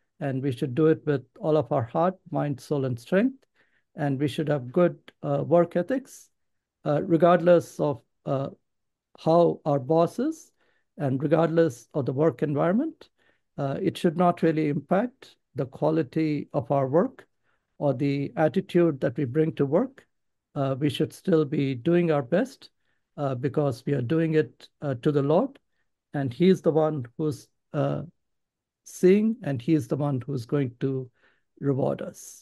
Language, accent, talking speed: English, Indian, 170 wpm